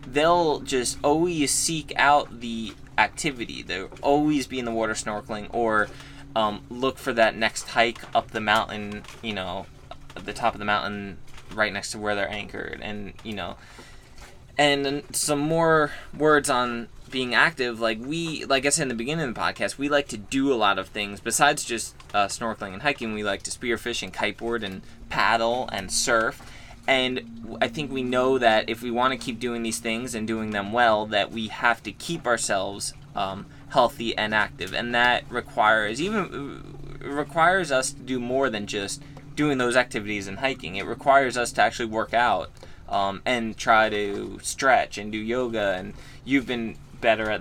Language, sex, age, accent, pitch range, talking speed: English, male, 20-39, American, 105-130 Hz, 185 wpm